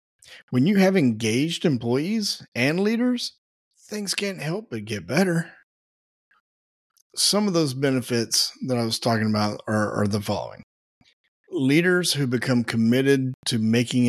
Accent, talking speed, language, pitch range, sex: American, 135 wpm, English, 110-150 Hz, male